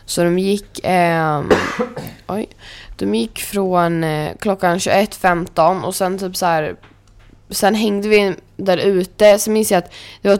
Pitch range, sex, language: 160-185 Hz, female, Swedish